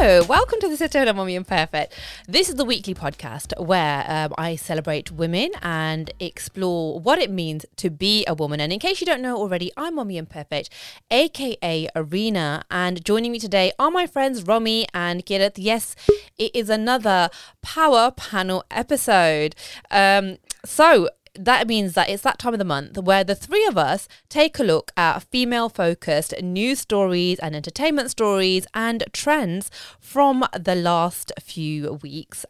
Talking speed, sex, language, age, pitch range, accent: 165 wpm, female, English, 20-39, 165-235 Hz, British